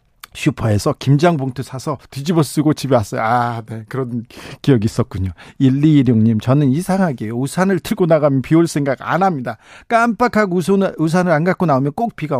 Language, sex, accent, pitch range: Korean, male, native, 130-175 Hz